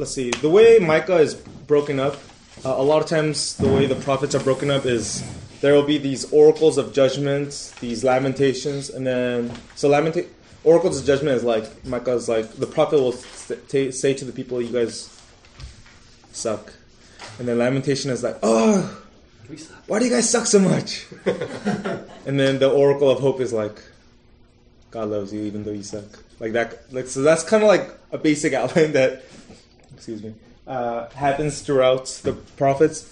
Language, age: English, 20-39